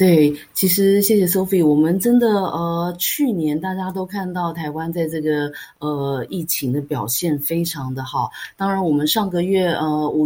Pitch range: 145-185 Hz